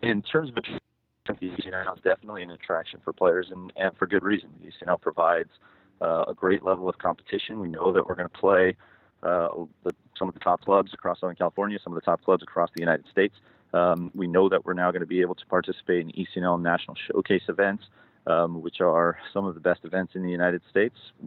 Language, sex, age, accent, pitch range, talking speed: English, male, 30-49, American, 90-100 Hz, 220 wpm